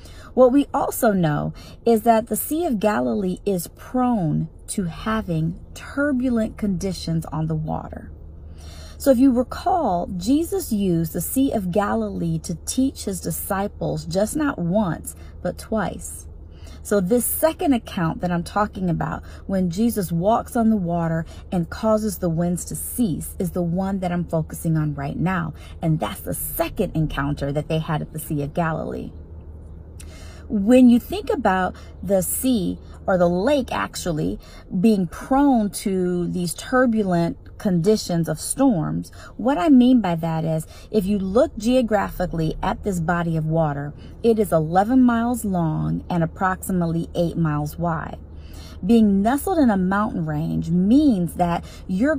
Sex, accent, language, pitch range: female, American, English, 155-225 Hz